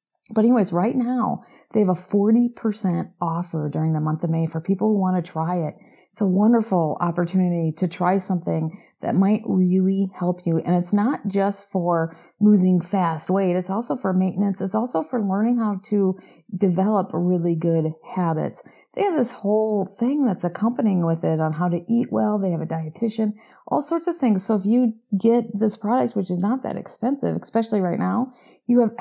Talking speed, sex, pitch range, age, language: 190 wpm, female, 170-215 Hz, 40-59, English